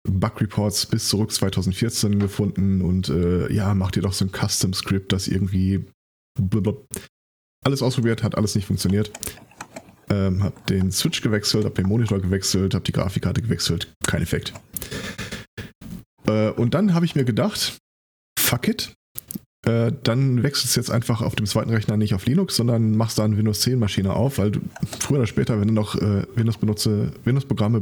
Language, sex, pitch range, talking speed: German, male, 100-125 Hz, 170 wpm